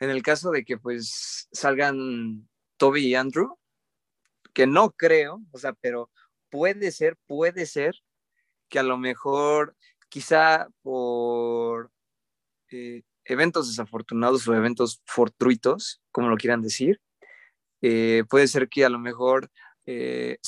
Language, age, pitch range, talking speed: Spanish, 20-39, 120-140 Hz, 130 wpm